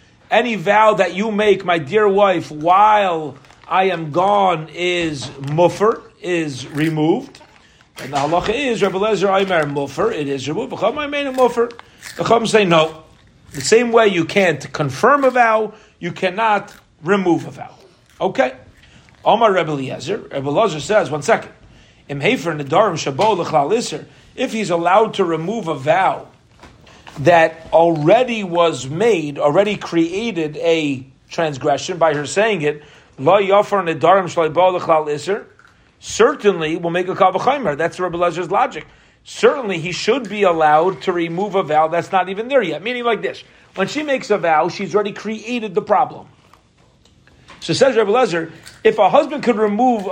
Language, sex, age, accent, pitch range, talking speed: English, male, 40-59, American, 160-215 Hz, 145 wpm